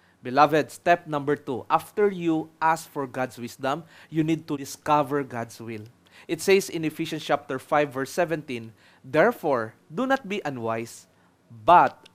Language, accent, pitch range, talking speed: English, Filipino, 115-150 Hz, 150 wpm